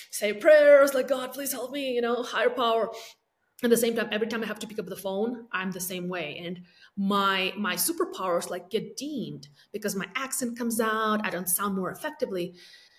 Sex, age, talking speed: female, 30-49, 215 wpm